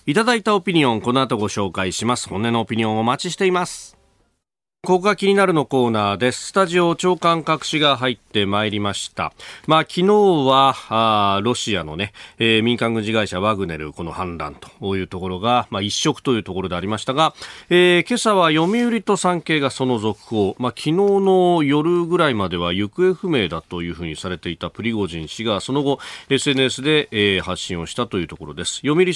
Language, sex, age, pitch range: Japanese, male, 40-59, 100-150 Hz